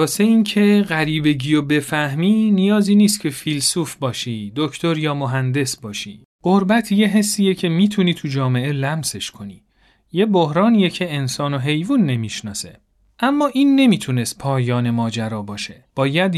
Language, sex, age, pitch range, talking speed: Persian, male, 40-59, 125-195 Hz, 140 wpm